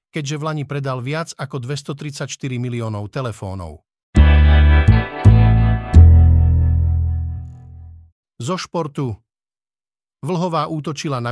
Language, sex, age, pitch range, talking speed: Slovak, male, 50-69, 115-150 Hz, 75 wpm